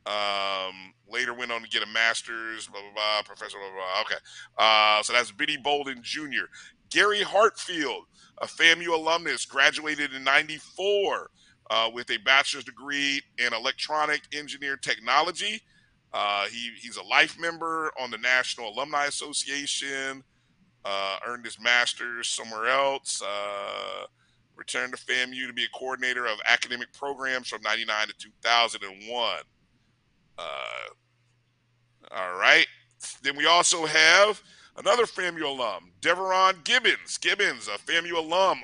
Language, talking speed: English, 135 wpm